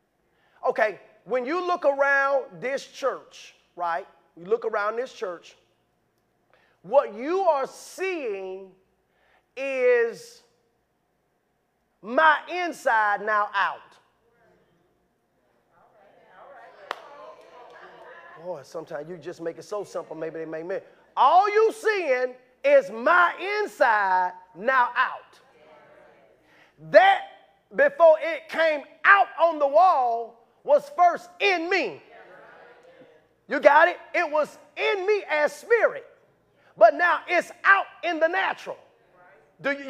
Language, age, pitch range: English, 30-49, 255-375 Hz